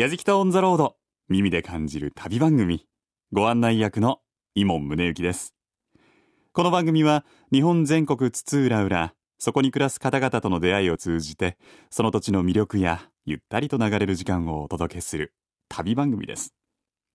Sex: male